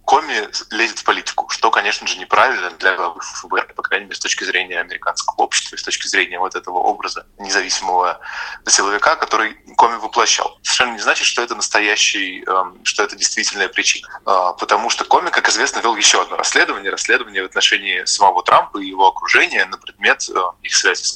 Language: Russian